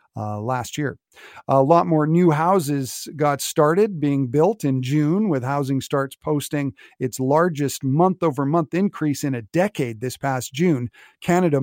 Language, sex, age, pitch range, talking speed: English, male, 50-69, 135-180 Hz, 150 wpm